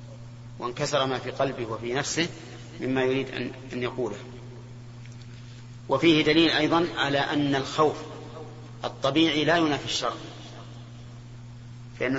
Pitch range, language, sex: 120-140 Hz, Arabic, male